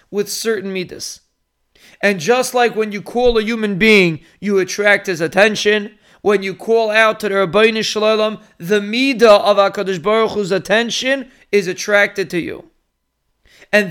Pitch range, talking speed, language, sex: 205-245 Hz, 155 wpm, English, male